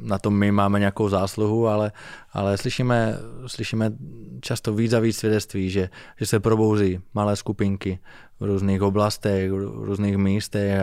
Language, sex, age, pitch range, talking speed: Slovak, male, 20-39, 95-110 Hz, 150 wpm